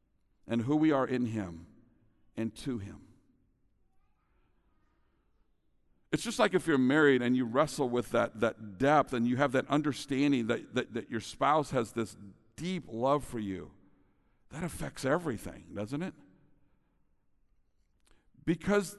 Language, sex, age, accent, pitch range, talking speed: English, male, 60-79, American, 130-175 Hz, 140 wpm